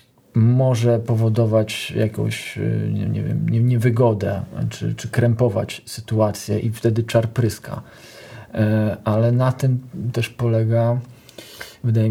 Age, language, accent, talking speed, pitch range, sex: 40-59, Polish, native, 105 wpm, 110-120 Hz, male